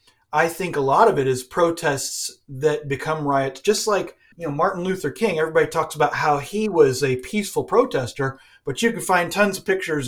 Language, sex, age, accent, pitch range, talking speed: English, male, 40-59, American, 125-165 Hz, 200 wpm